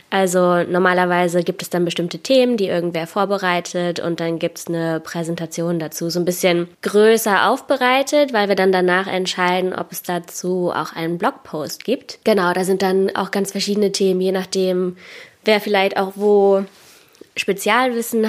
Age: 20-39